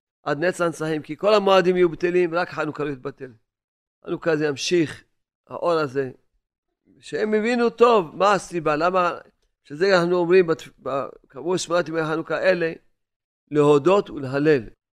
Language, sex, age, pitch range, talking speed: Hebrew, male, 40-59, 140-185 Hz, 135 wpm